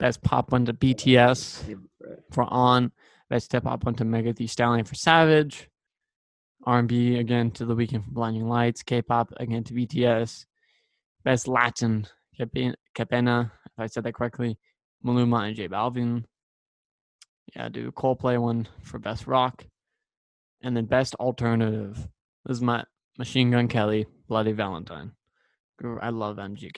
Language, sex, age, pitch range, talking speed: English, male, 20-39, 115-130 Hz, 140 wpm